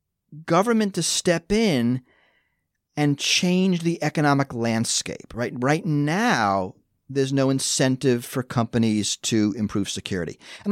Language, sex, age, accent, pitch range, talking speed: English, male, 40-59, American, 115-165 Hz, 120 wpm